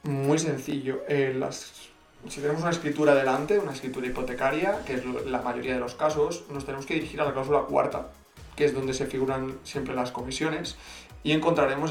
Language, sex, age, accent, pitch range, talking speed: Spanish, male, 20-39, Spanish, 130-150 Hz, 180 wpm